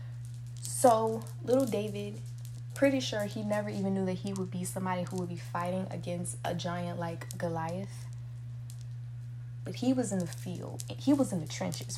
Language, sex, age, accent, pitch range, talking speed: English, female, 20-39, American, 120-150 Hz, 170 wpm